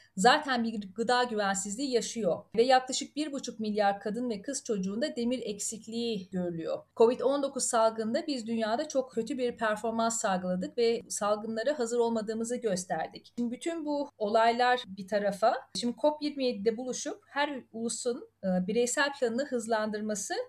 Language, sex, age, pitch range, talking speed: Turkish, female, 40-59, 225-280 Hz, 130 wpm